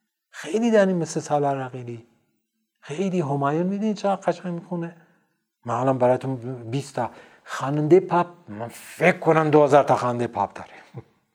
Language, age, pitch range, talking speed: Persian, 60-79, 125-170 Hz, 150 wpm